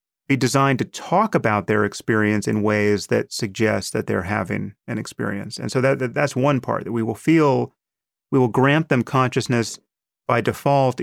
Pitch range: 110-135 Hz